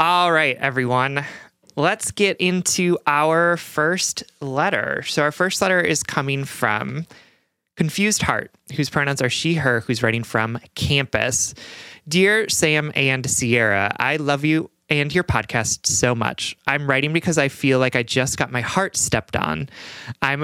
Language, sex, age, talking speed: English, male, 20-39, 155 wpm